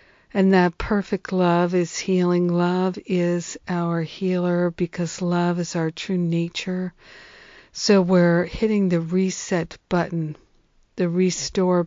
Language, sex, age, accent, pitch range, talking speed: English, female, 60-79, American, 170-185 Hz, 120 wpm